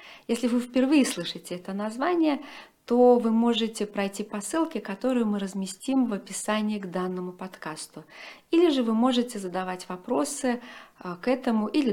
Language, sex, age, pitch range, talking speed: Russian, female, 40-59, 185-235 Hz, 145 wpm